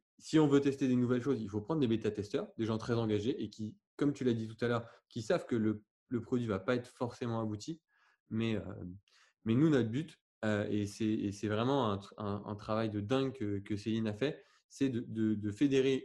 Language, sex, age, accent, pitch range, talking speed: French, male, 20-39, French, 110-130 Hz, 245 wpm